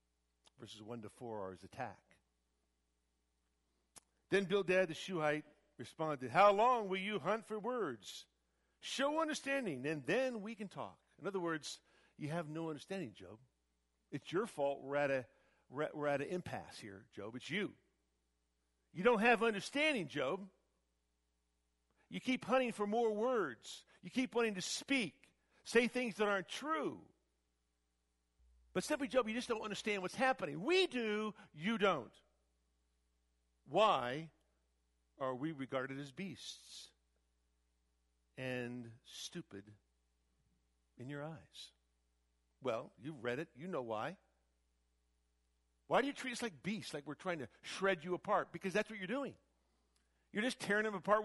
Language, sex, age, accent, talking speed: English, male, 50-69, American, 145 wpm